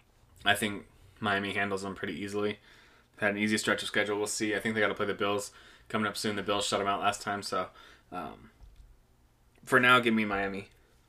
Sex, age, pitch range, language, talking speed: male, 20-39, 100-115 Hz, English, 210 wpm